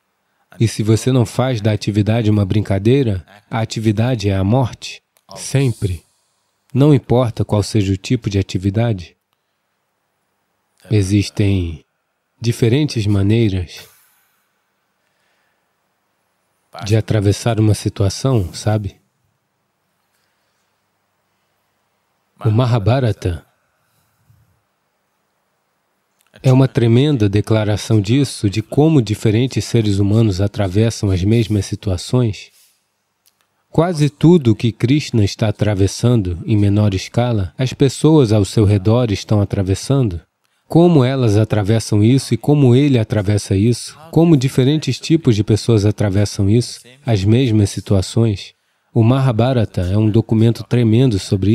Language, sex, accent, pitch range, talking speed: English, male, Brazilian, 105-125 Hz, 105 wpm